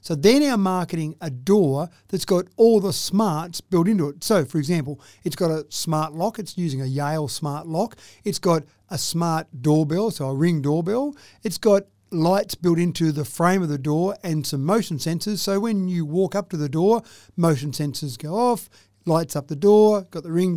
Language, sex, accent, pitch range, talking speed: English, male, Australian, 150-190 Hz, 205 wpm